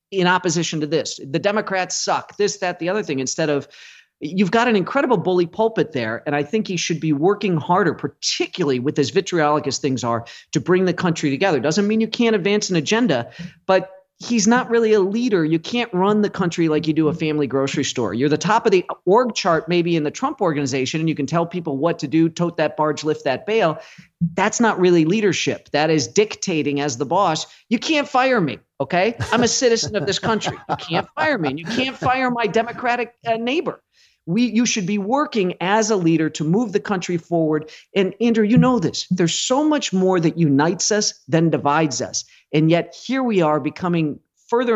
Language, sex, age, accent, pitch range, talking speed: English, male, 40-59, American, 155-220 Hz, 210 wpm